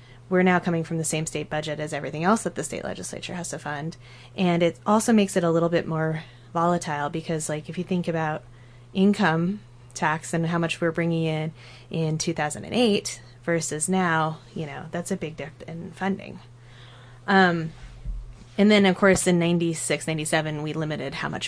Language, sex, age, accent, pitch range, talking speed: English, female, 20-39, American, 145-175 Hz, 185 wpm